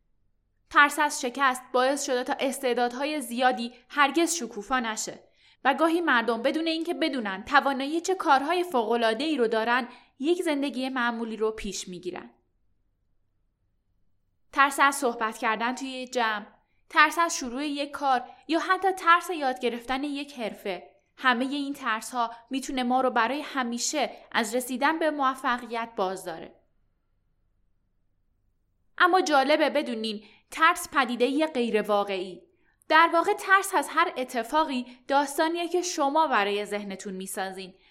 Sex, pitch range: female, 220-295 Hz